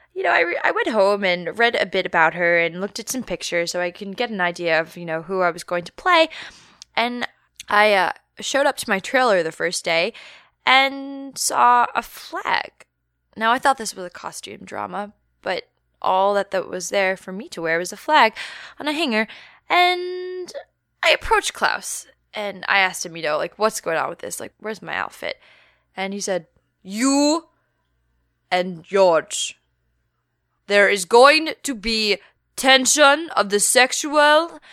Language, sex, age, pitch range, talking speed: English, female, 10-29, 190-275 Hz, 180 wpm